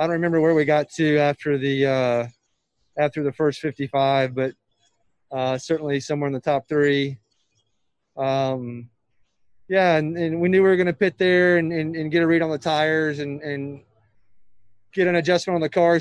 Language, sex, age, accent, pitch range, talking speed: English, male, 20-39, American, 140-165 Hz, 190 wpm